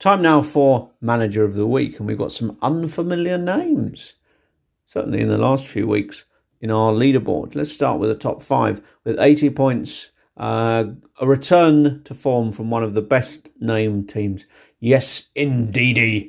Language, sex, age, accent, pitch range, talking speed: English, male, 50-69, British, 105-140 Hz, 160 wpm